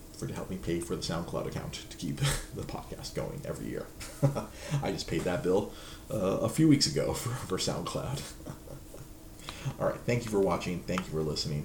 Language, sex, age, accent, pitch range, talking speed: English, male, 30-49, American, 90-110 Hz, 195 wpm